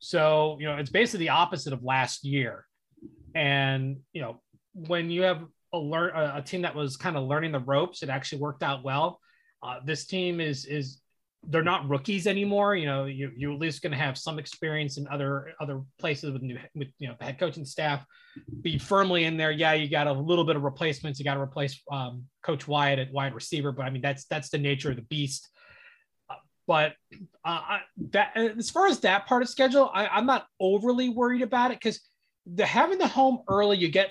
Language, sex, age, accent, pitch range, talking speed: English, male, 20-39, American, 140-190 Hz, 215 wpm